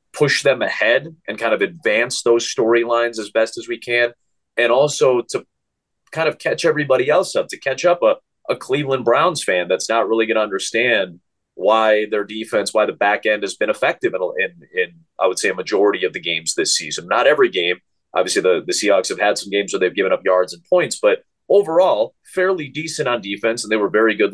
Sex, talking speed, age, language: male, 220 wpm, 30-49, English